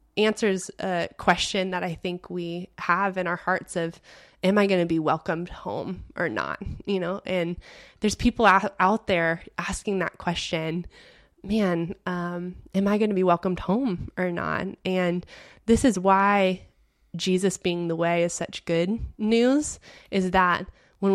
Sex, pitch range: female, 175-200 Hz